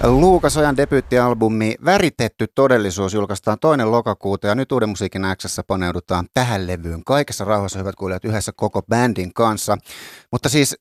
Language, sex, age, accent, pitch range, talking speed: Finnish, male, 30-49, native, 95-115 Hz, 140 wpm